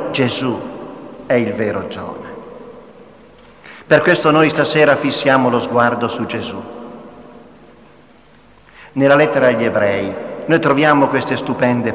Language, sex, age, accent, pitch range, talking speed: Italian, male, 50-69, native, 120-155 Hz, 110 wpm